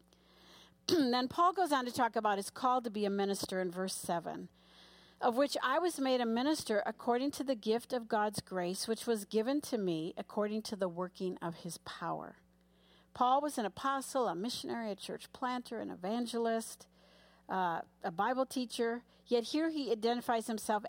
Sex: female